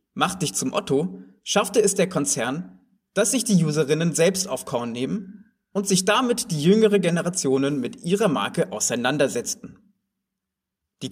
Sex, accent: male, German